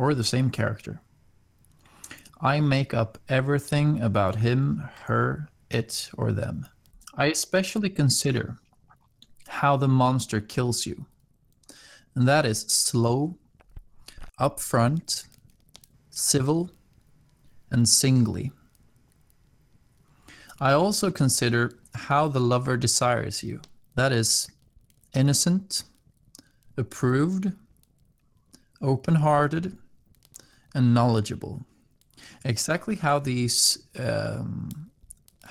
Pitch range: 120-145 Hz